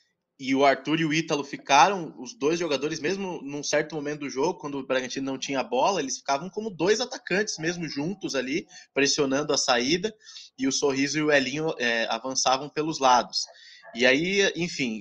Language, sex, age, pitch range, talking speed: Portuguese, male, 20-39, 130-165 Hz, 185 wpm